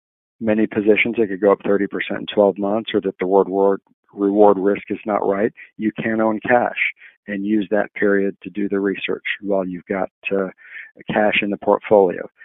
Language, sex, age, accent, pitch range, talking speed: English, male, 50-69, American, 100-110 Hz, 190 wpm